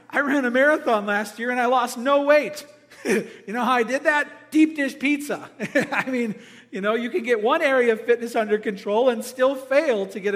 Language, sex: English, male